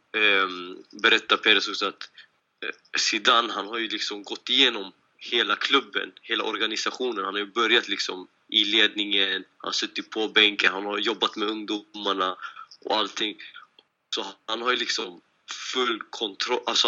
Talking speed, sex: 150 wpm, male